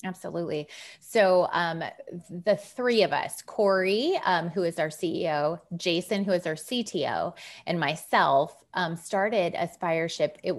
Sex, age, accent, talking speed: female, 20-39, American, 135 wpm